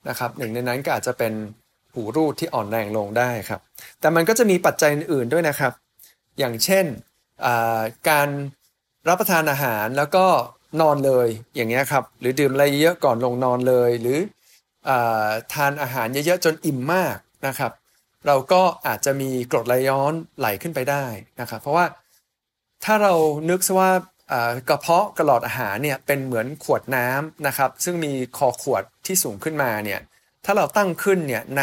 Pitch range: 125-160 Hz